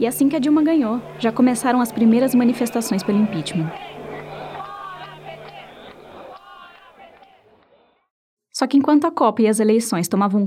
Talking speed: 125 wpm